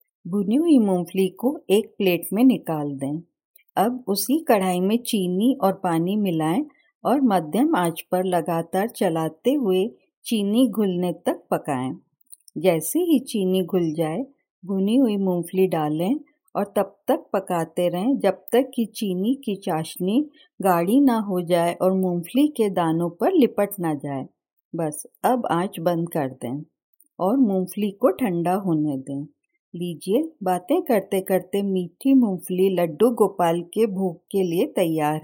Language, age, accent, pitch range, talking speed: Hindi, 50-69, native, 175-230 Hz, 145 wpm